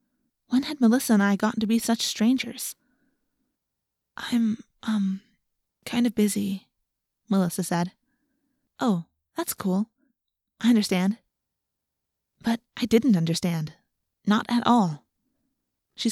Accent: American